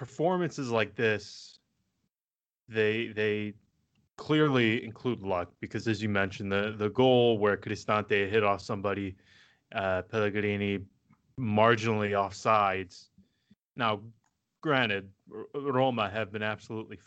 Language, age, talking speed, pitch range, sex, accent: English, 20-39, 105 wpm, 100-120 Hz, male, American